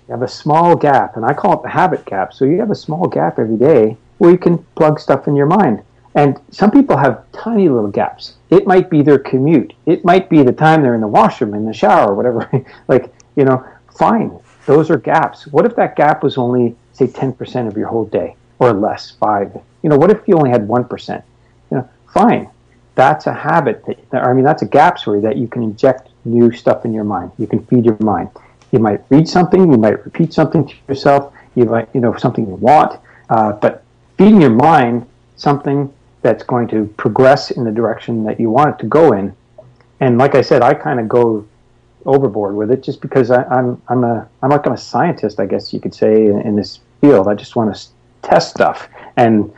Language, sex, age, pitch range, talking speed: English, male, 50-69, 115-145 Hz, 225 wpm